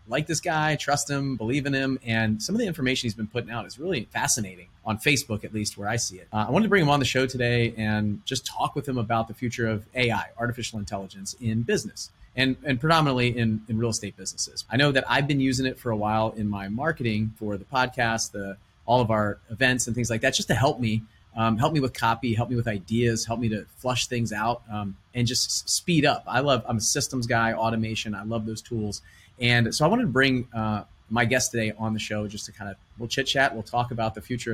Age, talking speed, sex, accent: 30-49, 250 wpm, male, American